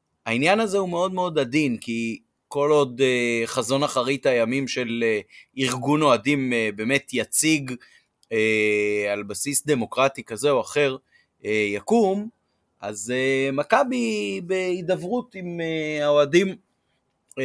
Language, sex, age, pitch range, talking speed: Hebrew, male, 30-49, 115-170 Hz, 125 wpm